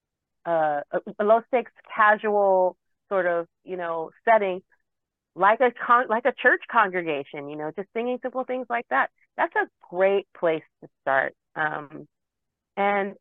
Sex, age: female, 40-59